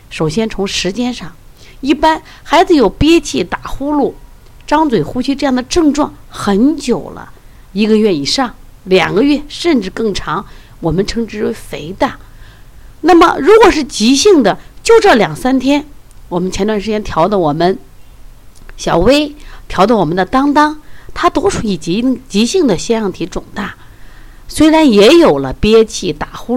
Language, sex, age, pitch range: Chinese, female, 50-69, 185-300 Hz